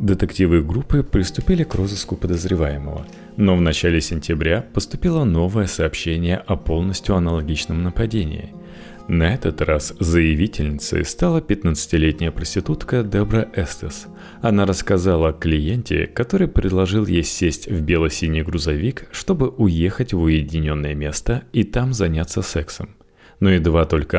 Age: 30-49